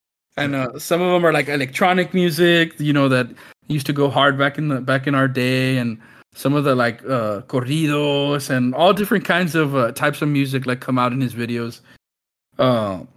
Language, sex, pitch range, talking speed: English, male, 130-160 Hz, 210 wpm